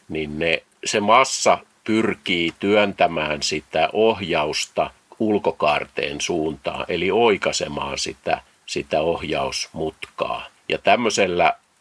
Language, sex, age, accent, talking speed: Finnish, male, 50-69, native, 85 wpm